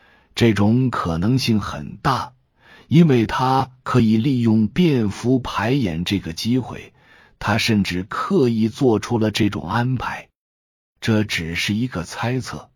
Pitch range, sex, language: 90-120 Hz, male, Chinese